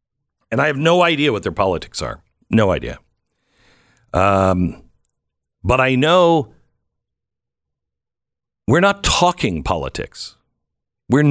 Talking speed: 105 wpm